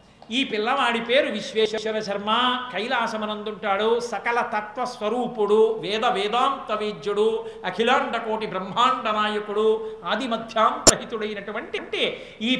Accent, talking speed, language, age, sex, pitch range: native, 75 wpm, Telugu, 50-69, male, 210-245 Hz